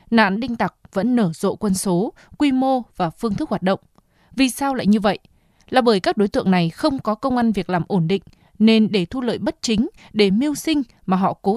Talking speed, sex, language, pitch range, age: 240 wpm, female, Vietnamese, 190-235 Hz, 20-39